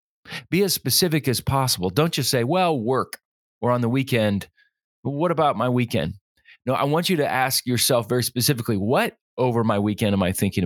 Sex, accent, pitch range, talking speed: male, American, 105-135 Hz, 195 wpm